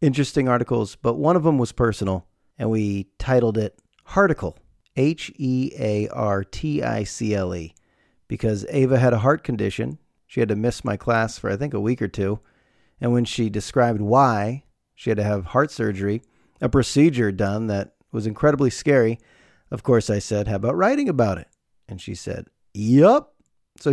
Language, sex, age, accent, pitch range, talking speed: English, male, 40-59, American, 105-135 Hz, 165 wpm